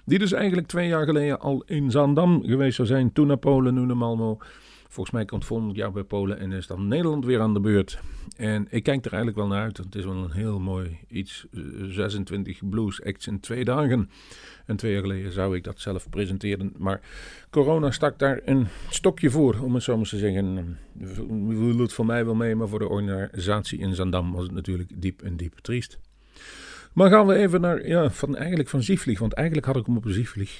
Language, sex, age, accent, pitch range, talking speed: Dutch, male, 50-69, Dutch, 95-125 Hz, 220 wpm